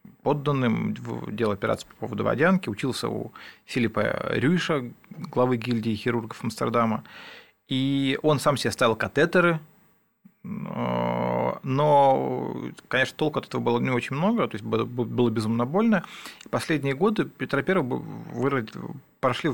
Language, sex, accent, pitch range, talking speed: Russian, male, native, 120-165 Hz, 120 wpm